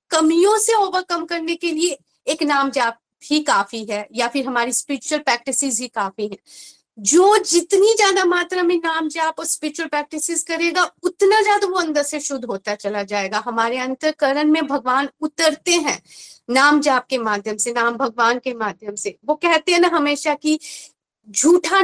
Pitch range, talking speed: 270-345 Hz, 175 wpm